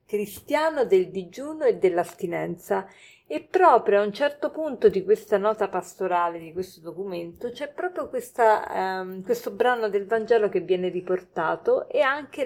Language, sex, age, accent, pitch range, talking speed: Italian, female, 40-59, native, 185-280 Hz, 150 wpm